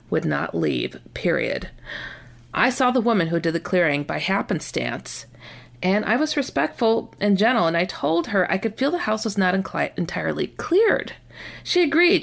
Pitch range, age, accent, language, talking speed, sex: 170-225 Hz, 40-59, American, English, 170 wpm, female